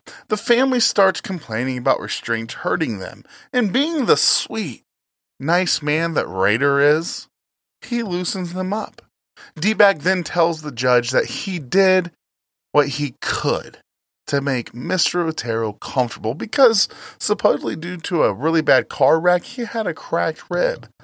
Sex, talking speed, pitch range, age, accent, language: male, 145 wpm, 135-190 Hz, 20-39, American, English